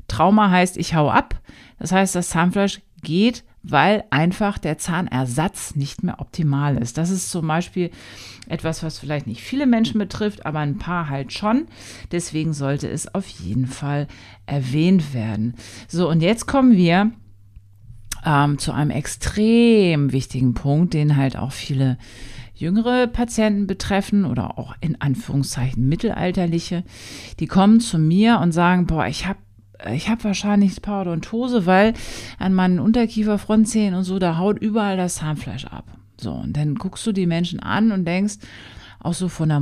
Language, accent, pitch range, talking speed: German, German, 135-205 Hz, 160 wpm